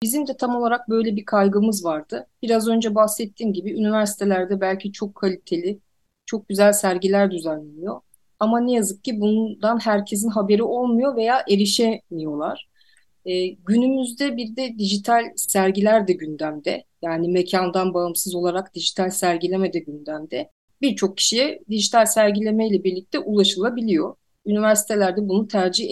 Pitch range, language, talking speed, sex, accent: 195-235 Hz, Turkish, 130 wpm, female, native